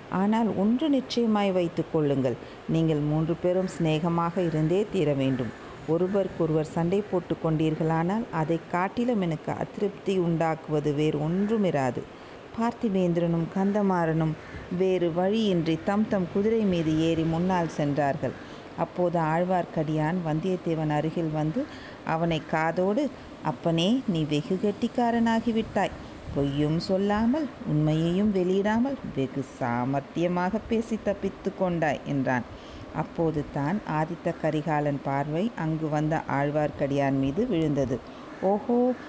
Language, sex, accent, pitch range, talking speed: Tamil, female, native, 155-205 Hz, 100 wpm